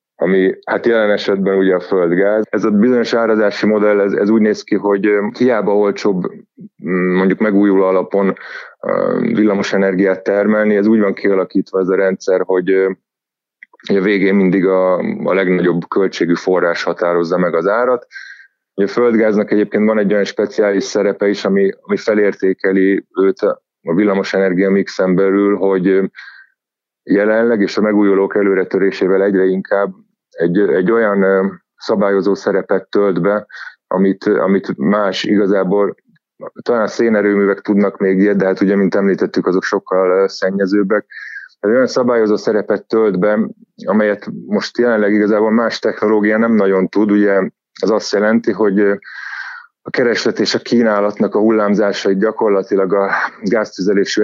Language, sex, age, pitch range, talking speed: Hungarian, male, 30-49, 95-105 Hz, 135 wpm